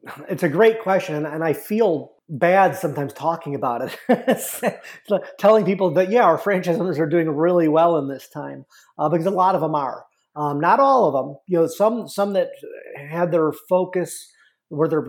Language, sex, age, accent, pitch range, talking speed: English, male, 30-49, American, 140-175 Hz, 185 wpm